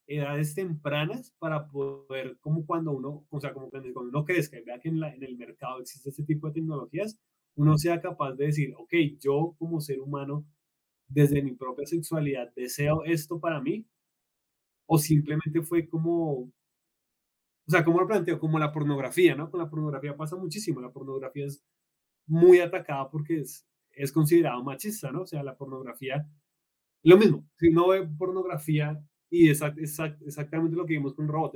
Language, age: Spanish, 20-39